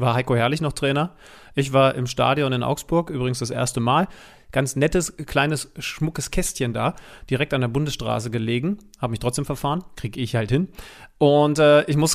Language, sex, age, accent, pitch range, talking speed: German, male, 30-49, German, 130-160 Hz, 190 wpm